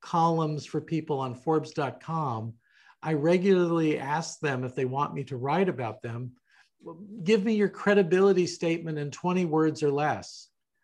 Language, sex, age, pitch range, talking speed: English, male, 50-69, 145-180 Hz, 150 wpm